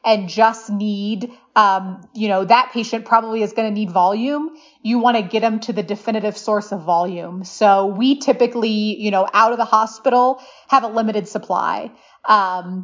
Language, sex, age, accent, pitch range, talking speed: English, female, 30-49, American, 200-235 Hz, 180 wpm